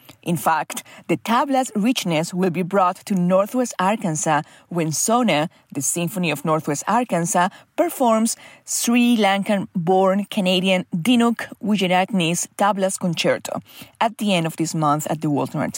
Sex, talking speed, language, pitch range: female, 135 wpm, English, 170-230 Hz